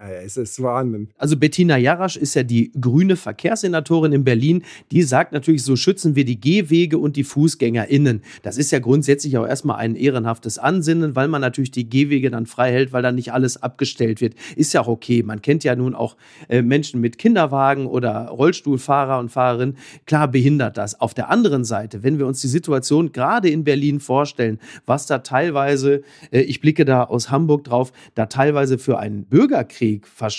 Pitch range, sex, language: 130-160 Hz, male, German